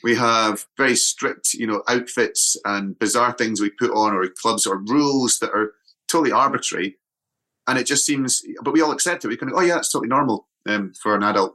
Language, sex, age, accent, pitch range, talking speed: English, male, 30-49, British, 100-120 Hz, 220 wpm